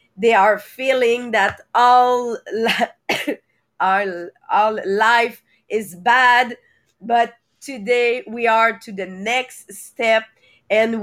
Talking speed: 110 wpm